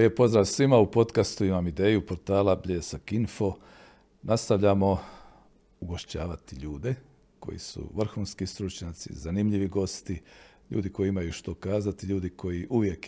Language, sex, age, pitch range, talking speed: Croatian, male, 50-69, 90-105 Hz, 120 wpm